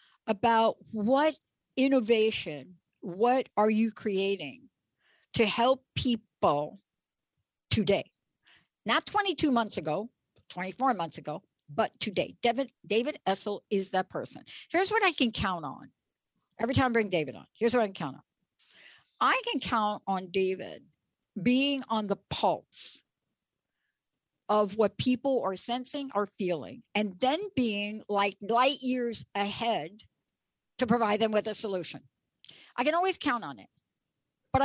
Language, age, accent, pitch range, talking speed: English, 60-79, American, 200-255 Hz, 140 wpm